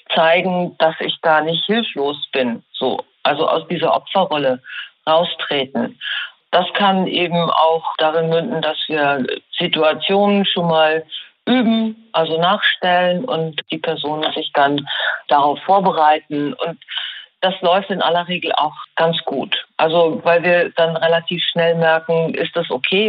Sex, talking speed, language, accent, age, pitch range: female, 140 wpm, German, German, 50-69, 160-190 Hz